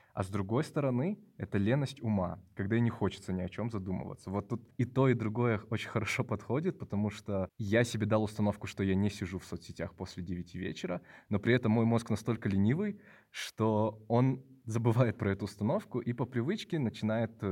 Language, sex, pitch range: Russian, male, 95-115 Hz